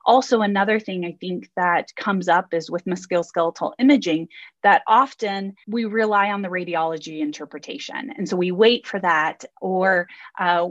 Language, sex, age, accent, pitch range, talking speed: English, female, 20-39, American, 175-220 Hz, 155 wpm